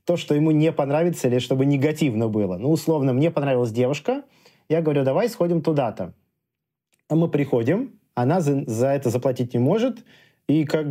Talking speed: 165 wpm